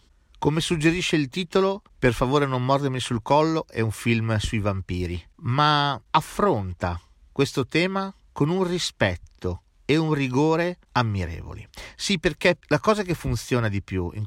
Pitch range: 105-150 Hz